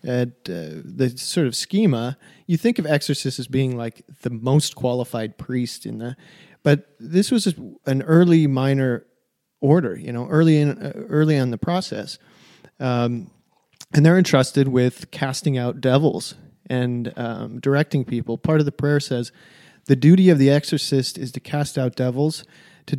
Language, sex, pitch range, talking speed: English, male, 125-160 Hz, 165 wpm